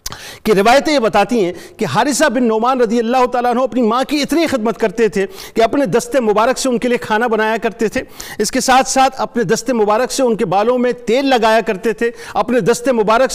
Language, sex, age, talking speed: Urdu, male, 50-69, 225 wpm